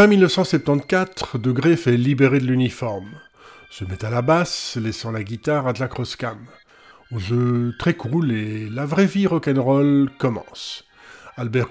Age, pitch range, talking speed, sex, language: 50-69, 115-155 Hz, 155 wpm, male, French